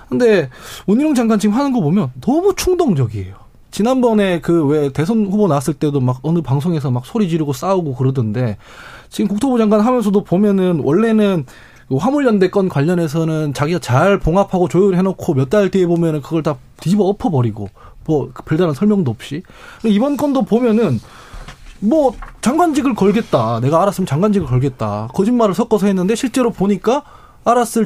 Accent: native